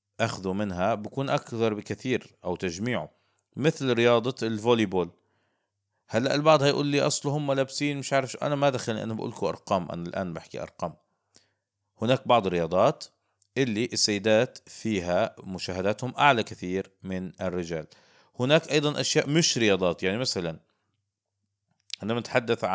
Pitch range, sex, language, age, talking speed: 95-120 Hz, male, Arabic, 50-69, 135 wpm